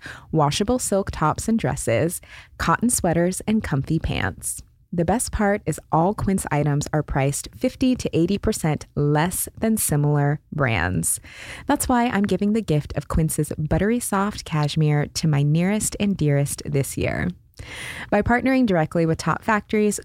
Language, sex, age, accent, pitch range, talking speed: English, female, 20-39, American, 145-195 Hz, 150 wpm